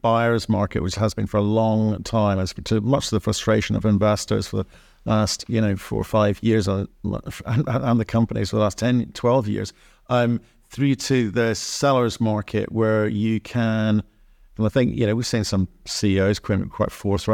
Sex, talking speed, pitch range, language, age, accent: male, 195 wpm, 95-110 Hz, English, 50-69, British